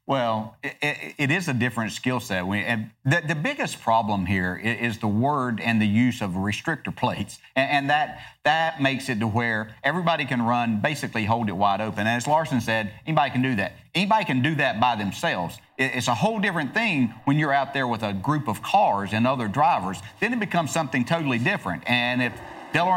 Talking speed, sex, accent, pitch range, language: 205 wpm, male, American, 115-160 Hz, English